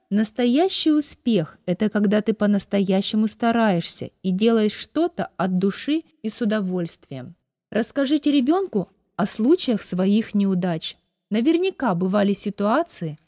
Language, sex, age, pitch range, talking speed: Russian, female, 20-39, 185-245 Hz, 110 wpm